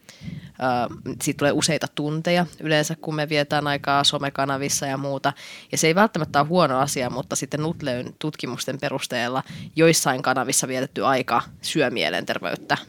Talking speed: 140 wpm